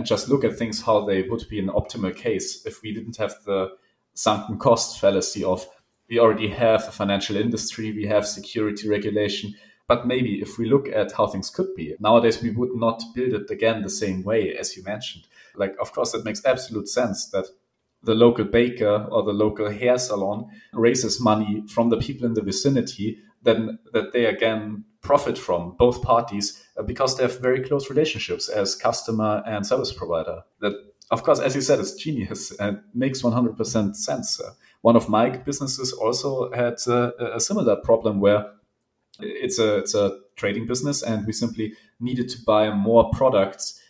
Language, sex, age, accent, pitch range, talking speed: English, male, 30-49, German, 105-120 Hz, 185 wpm